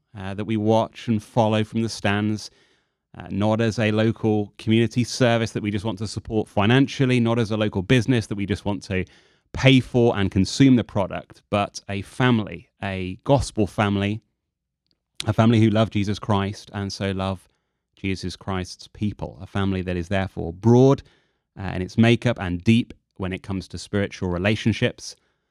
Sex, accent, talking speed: male, British, 175 wpm